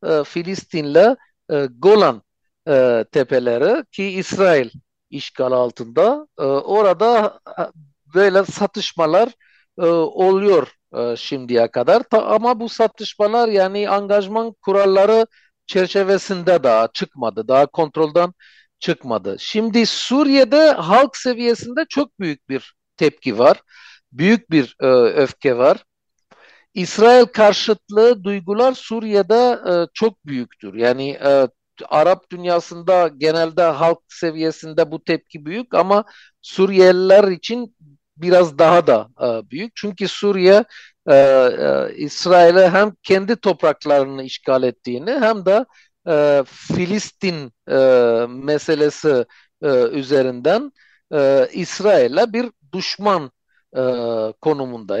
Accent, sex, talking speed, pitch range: native, male, 95 wpm, 140-215 Hz